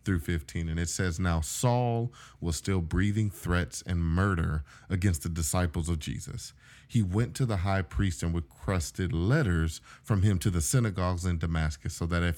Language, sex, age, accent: English, male, 40-59, American